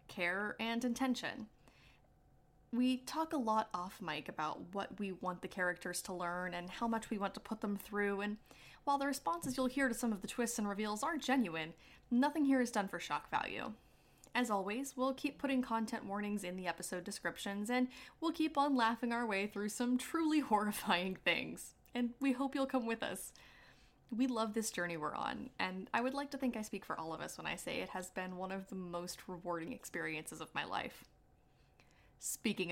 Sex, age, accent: female, 10-29, American